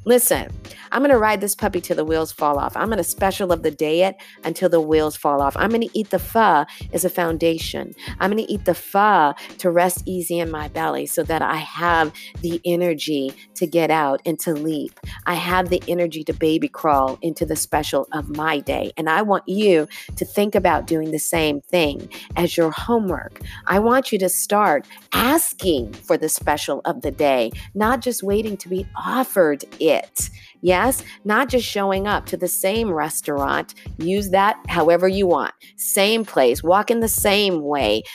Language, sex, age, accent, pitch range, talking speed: English, female, 50-69, American, 160-215 Hz, 200 wpm